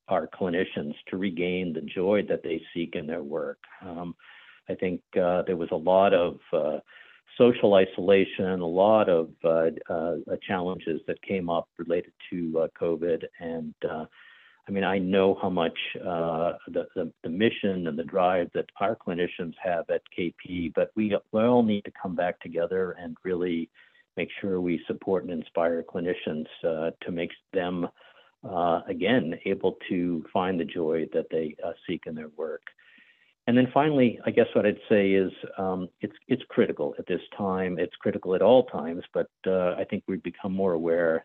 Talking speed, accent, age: 180 wpm, American, 50-69